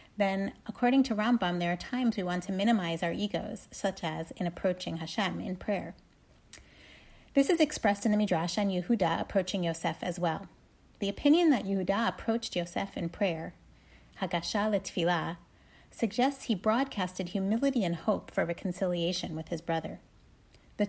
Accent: American